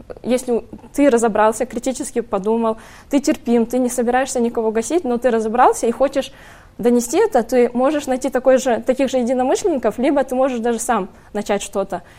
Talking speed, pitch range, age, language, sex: 165 wpm, 220-255 Hz, 20-39, Russian, female